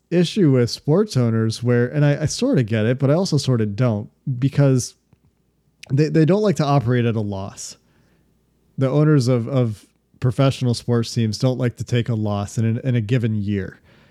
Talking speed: 200 wpm